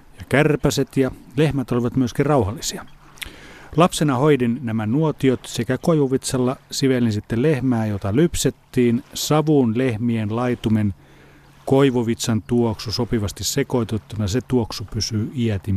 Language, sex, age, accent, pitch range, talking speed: Finnish, male, 40-59, native, 110-135 Hz, 105 wpm